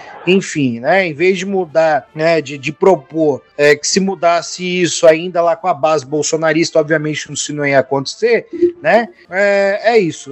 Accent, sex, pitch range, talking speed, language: Brazilian, male, 165-205 Hz, 180 wpm, Portuguese